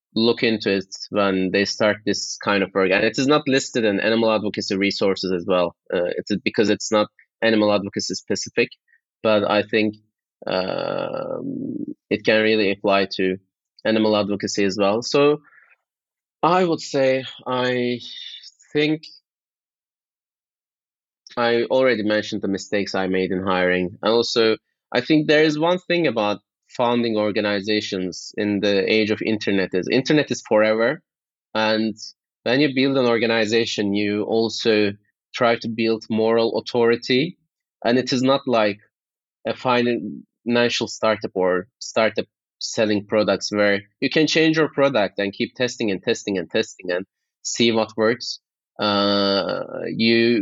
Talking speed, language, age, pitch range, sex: 145 wpm, English, 20-39, 100-120 Hz, male